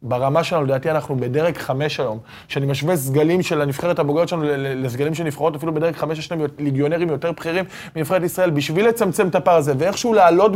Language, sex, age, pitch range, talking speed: Hebrew, male, 20-39, 140-175 Hz, 195 wpm